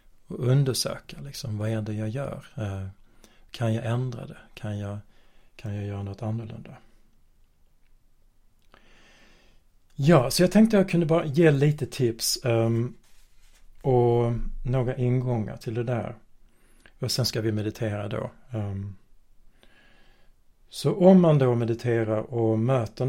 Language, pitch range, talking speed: Swedish, 110-125 Hz, 120 wpm